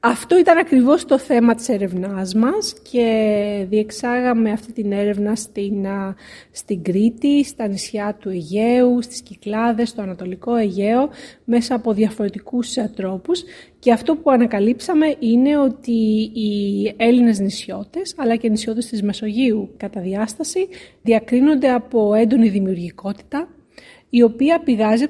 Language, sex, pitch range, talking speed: Greek, female, 215-265 Hz, 125 wpm